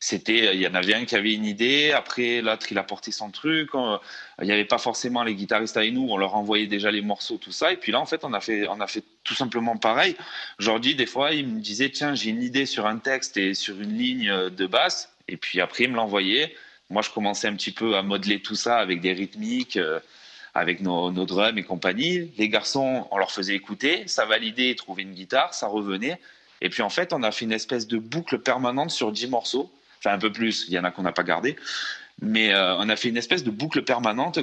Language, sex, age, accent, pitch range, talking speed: French, male, 30-49, French, 100-130 Hz, 250 wpm